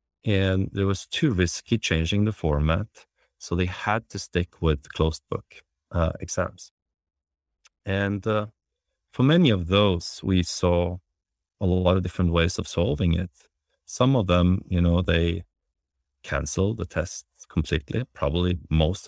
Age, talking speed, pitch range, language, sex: 40-59, 145 wpm, 85-100 Hz, English, male